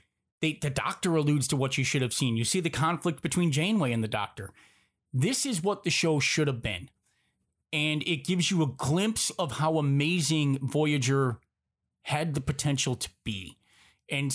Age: 30-49